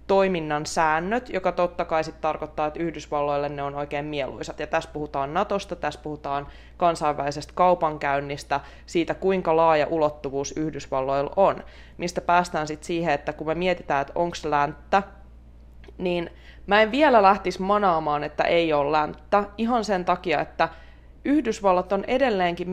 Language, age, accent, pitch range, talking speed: Finnish, 20-39, native, 150-180 Hz, 145 wpm